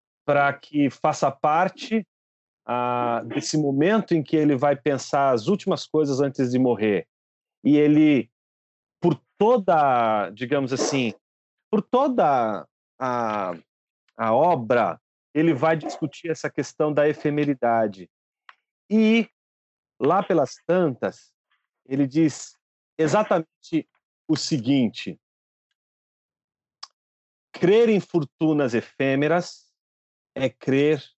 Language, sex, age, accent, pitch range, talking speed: Portuguese, male, 40-59, Brazilian, 120-155 Hz, 100 wpm